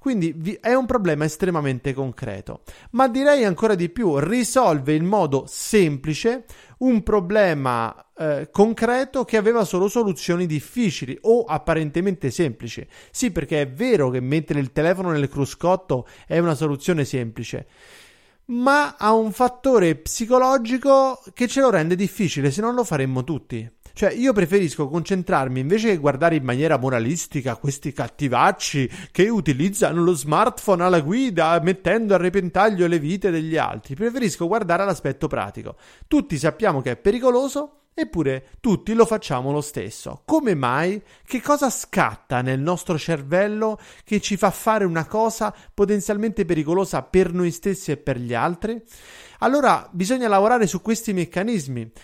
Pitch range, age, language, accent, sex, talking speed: 150-210 Hz, 30-49, Italian, native, male, 145 wpm